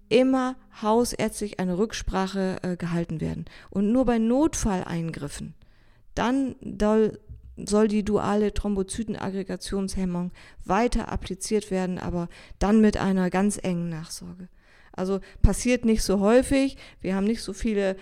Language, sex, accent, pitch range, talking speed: German, female, German, 190-230 Hz, 120 wpm